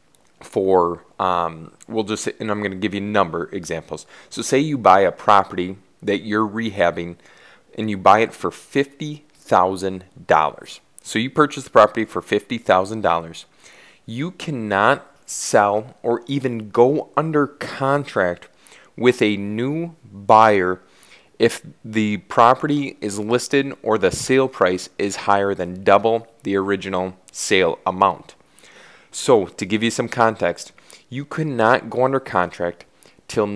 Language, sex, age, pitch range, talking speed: English, male, 30-49, 95-120 Hz, 140 wpm